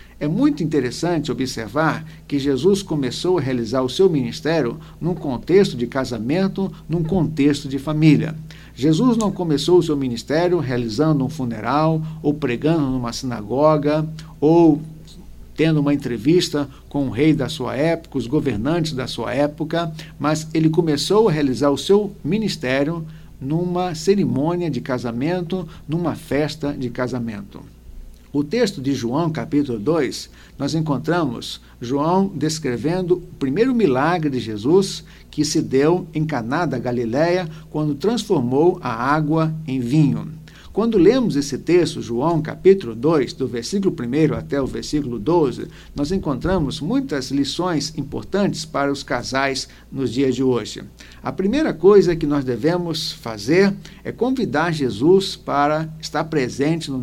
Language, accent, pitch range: Portuguese, Brazilian, 135-170 Hz